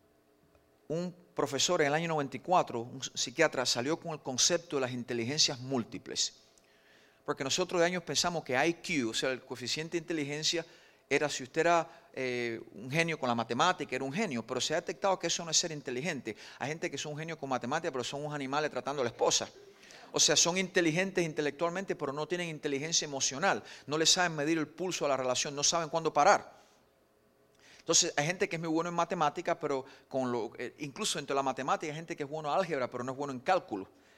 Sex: male